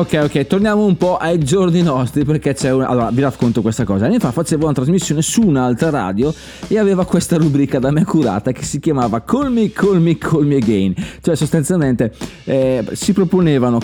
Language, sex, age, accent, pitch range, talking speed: Italian, male, 20-39, native, 125-175 Hz, 215 wpm